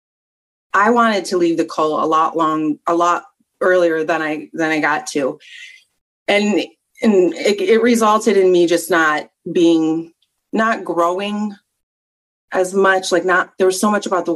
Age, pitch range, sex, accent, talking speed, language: 30-49, 165-205 Hz, female, American, 165 wpm, English